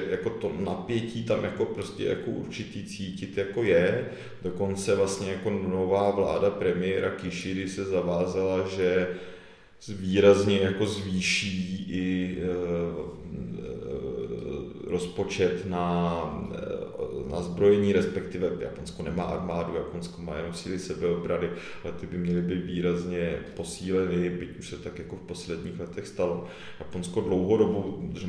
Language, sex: Czech, male